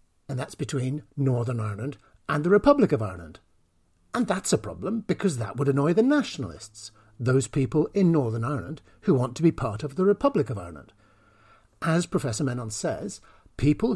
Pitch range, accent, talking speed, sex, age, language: 125-170 Hz, British, 170 wpm, male, 60-79, English